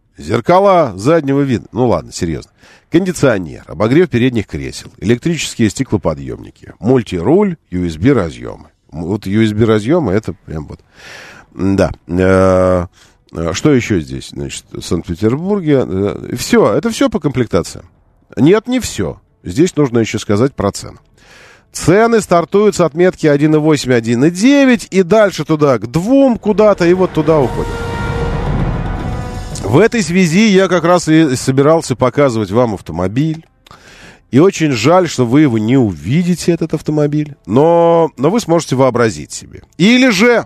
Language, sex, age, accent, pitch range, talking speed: Russian, male, 40-59, native, 105-170 Hz, 125 wpm